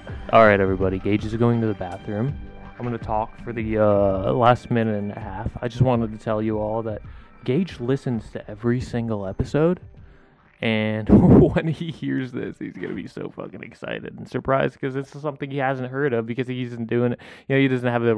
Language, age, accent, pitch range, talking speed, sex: English, 20-39, American, 105-135 Hz, 215 wpm, male